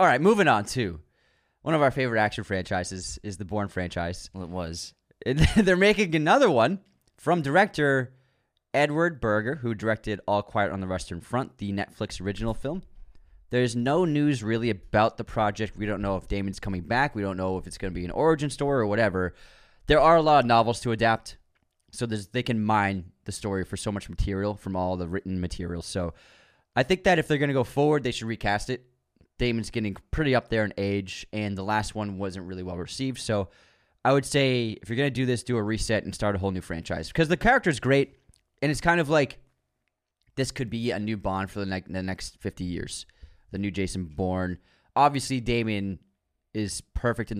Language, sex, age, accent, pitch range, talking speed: English, male, 20-39, American, 95-130 Hz, 210 wpm